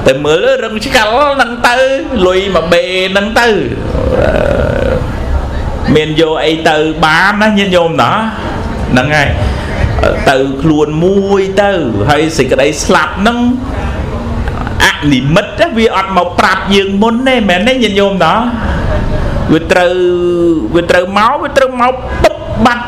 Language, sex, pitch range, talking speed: English, male, 150-205 Hz, 150 wpm